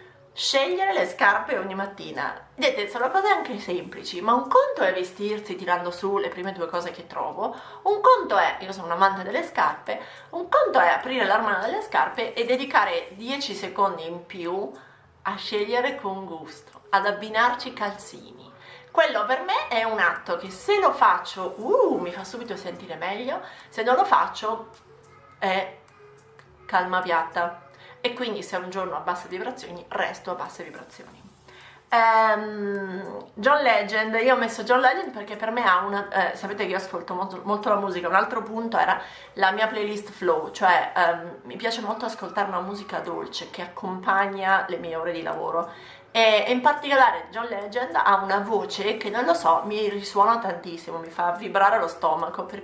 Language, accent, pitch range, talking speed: Italian, native, 180-230 Hz, 180 wpm